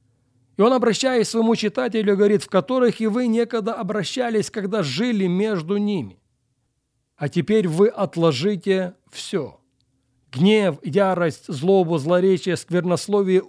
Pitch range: 145-205 Hz